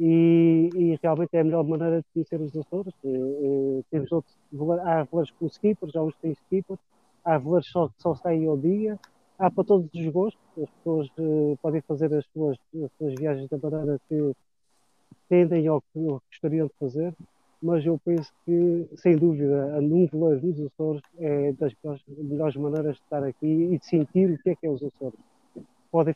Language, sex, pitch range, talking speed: Portuguese, male, 145-170 Hz, 195 wpm